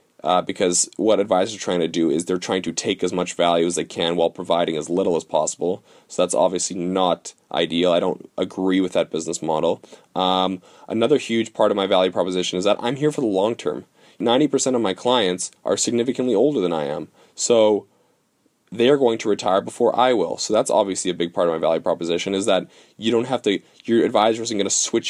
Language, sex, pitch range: English, male, 90-115 Hz